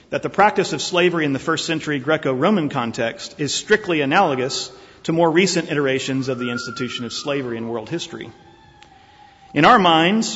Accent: American